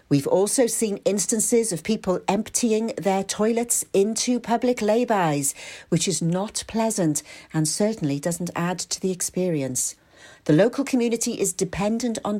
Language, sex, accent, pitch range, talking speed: English, female, British, 155-225 Hz, 140 wpm